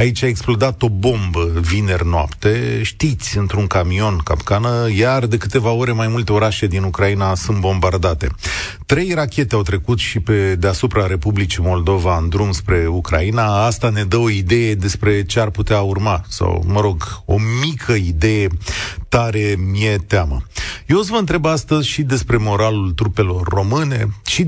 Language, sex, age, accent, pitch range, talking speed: Romanian, male, 30-49, native, 95-120 Hz, 160 wpm